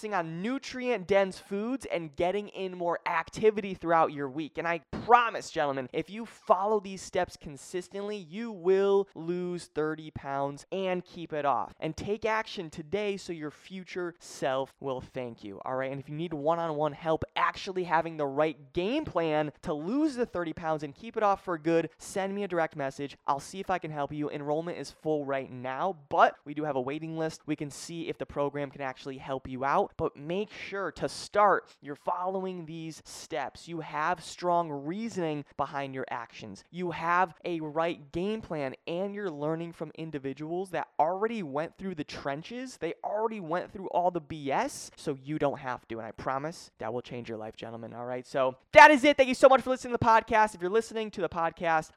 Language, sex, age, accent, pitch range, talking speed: English, male, 20-39, American, 145-190 Hz, 205 wpm